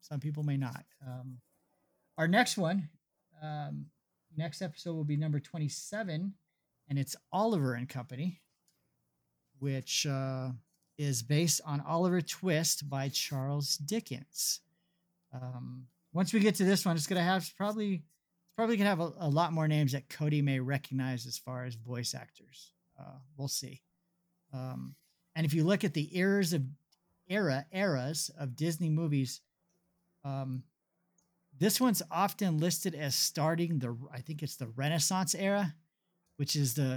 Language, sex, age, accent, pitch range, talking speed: English, male, 40-59, American, 130-175 Hz, 150 wpm